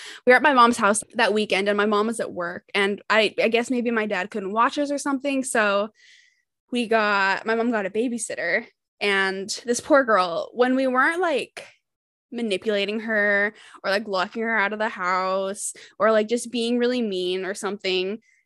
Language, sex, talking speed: English, female, 195 wpm